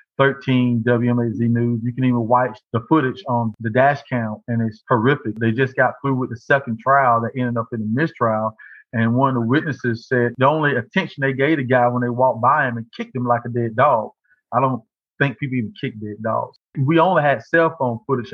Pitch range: 115-135 Hz